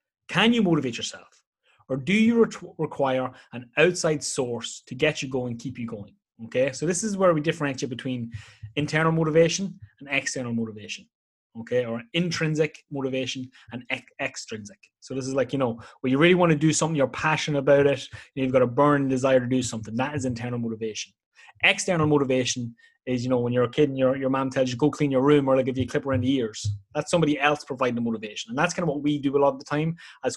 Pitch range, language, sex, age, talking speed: 125-155 Hz, English, male, 20-39, 225 wpm